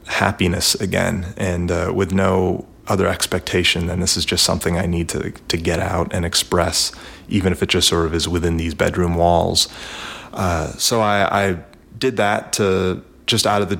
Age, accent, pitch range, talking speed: 30-49, American, 90-100 Hz, 185 wpm